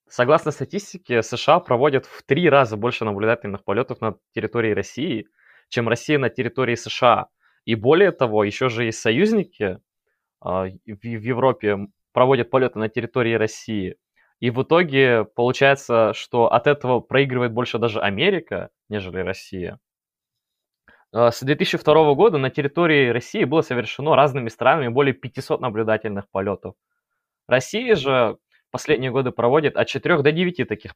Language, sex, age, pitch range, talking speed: Russian, male, 20-39, 110-150 Hz, 135 wpm